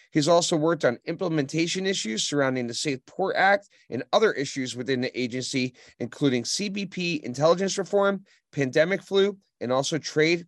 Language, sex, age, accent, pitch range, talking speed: English, male, 30-49, American, 130-165 Hz, 150 wpm